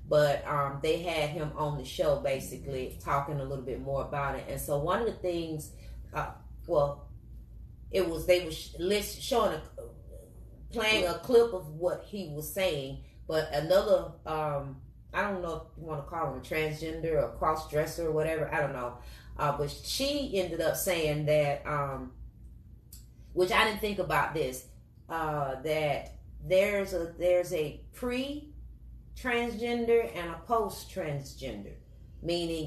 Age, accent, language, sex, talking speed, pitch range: 30-49, American, English, female, 160 wpm, 145-200 Hz